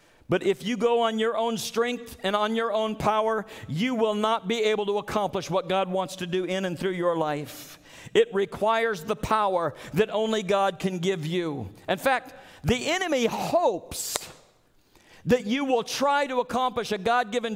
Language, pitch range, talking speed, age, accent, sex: English, 175-240 Hz, 180 wpm, 50-69, American, male